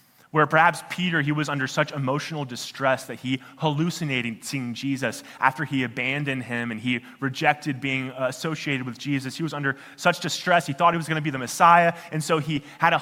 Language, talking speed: English, 200 wpm